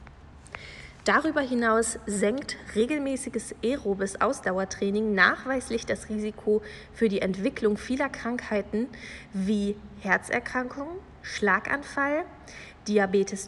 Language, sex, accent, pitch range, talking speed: German, female, German, 200-240 Hz, 80 wpm